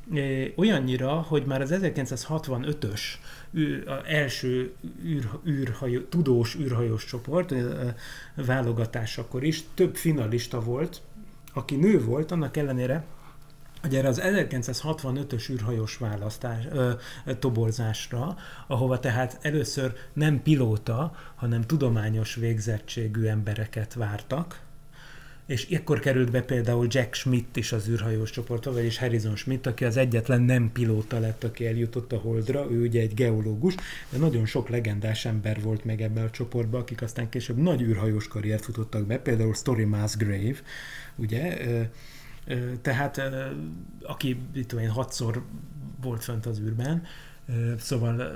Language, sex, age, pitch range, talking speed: Hungarian, male, 30-49, 115-140 Hz, 120 wpm